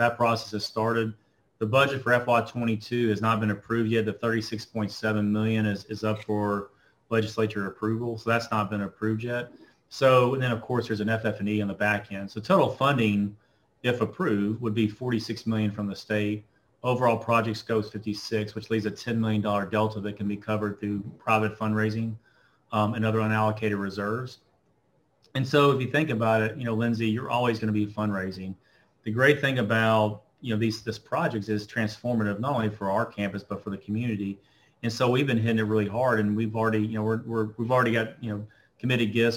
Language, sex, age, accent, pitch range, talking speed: English, male, 30-49, American, 105-115 Hz, 200 wpm